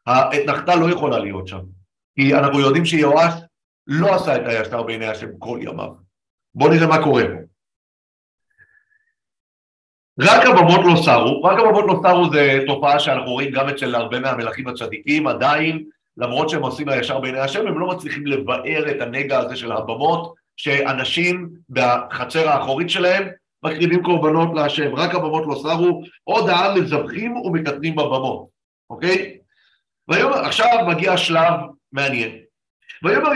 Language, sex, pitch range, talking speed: Hebrew, male, 135-180 Hz, 140 wpm